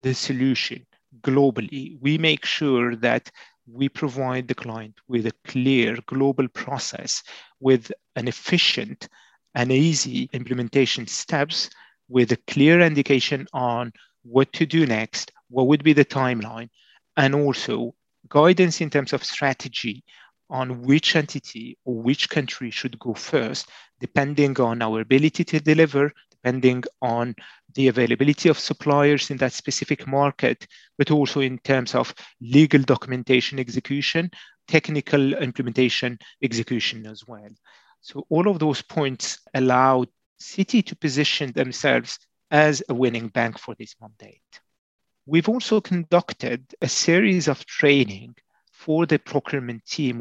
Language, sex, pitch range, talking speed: English, male, 125-150 Hz, 130 wpm